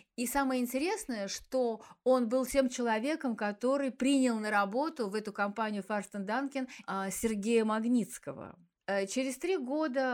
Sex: female